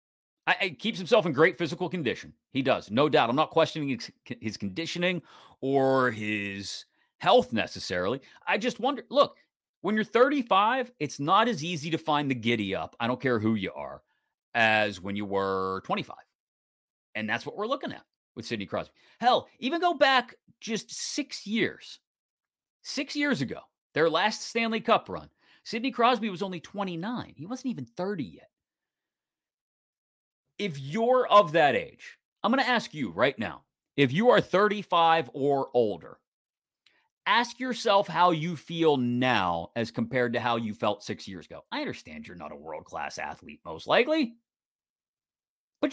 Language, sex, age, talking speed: English, male, 40-59, 165 wpm